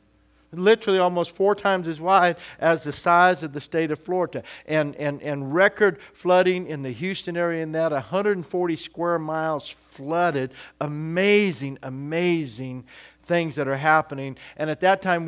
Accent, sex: American, male